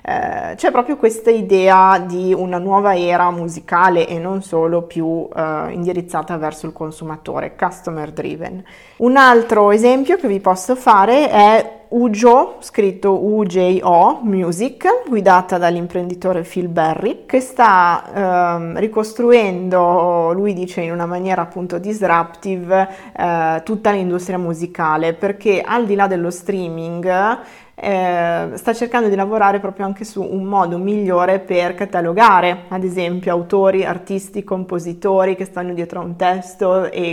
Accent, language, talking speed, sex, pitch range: native, Italian, 135 wpm, female, 170-195 Hz